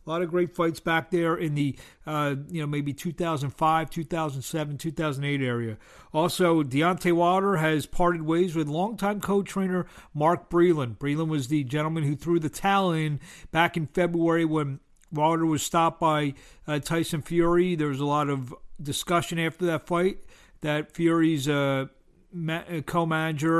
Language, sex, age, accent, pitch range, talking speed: English, male, 50-69, American, 145-175 Hz, 155 wpm